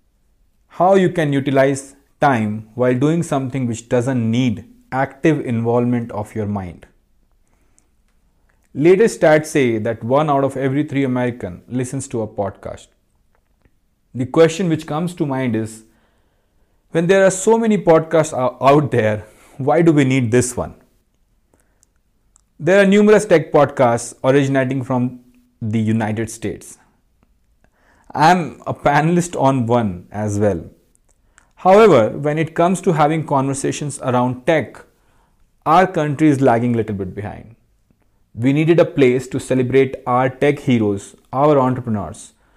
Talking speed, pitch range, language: 135 wpm, 110-150 Hz, English